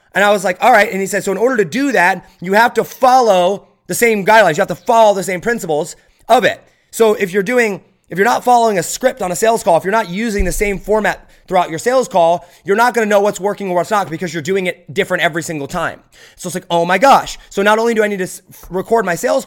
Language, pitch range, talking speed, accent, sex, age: English, 165-210 Hz, 275 wpm, American, male, 30-49